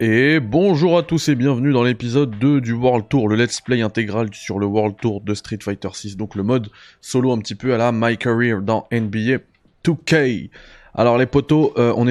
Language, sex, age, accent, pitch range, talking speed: French, male, 20-39, French, 105-130 Hz, 215 wpm